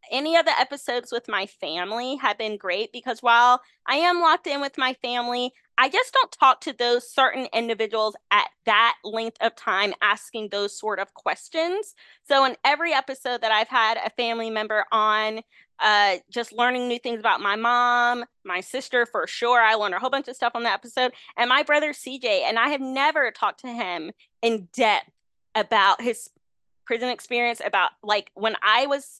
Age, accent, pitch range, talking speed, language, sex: 20-39, American, 215-270 Hz, 190 wpm, English, female